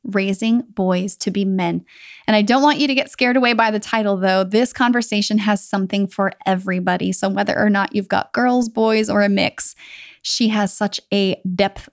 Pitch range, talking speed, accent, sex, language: 190-230 Hz, 200 wpm, American, female, English